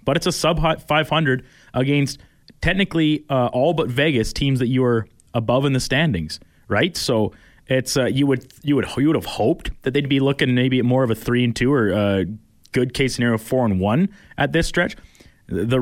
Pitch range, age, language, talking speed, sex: 115-145 Hz, 20-39, English, 215 wpm, male